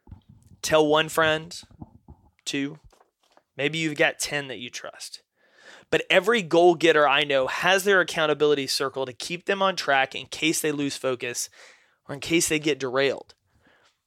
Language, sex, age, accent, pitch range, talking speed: English, male, 20-39, American, 140-170 Hz, 160 wpm